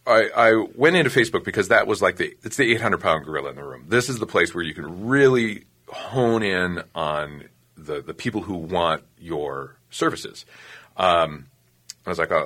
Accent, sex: American, male